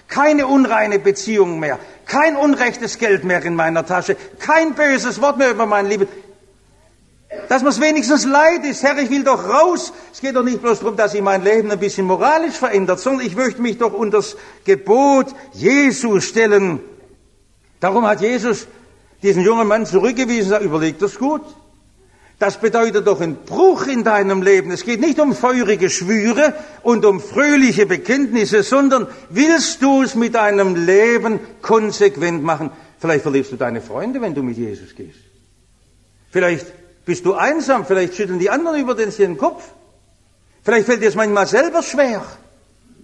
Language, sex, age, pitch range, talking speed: English, male, 60-79, 195-270 Hz, 165 wpm